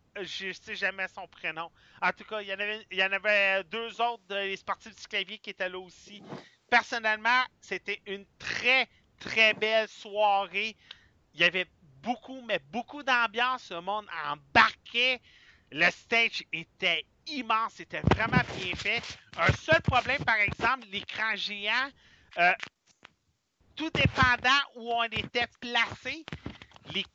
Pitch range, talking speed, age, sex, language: 195-255 Hz, 150 wpm, 40-59, male, French